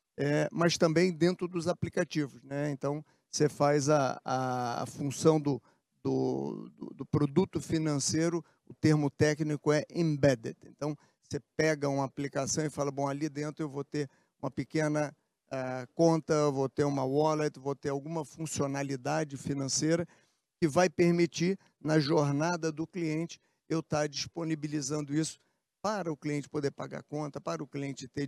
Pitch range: 140-165 Hz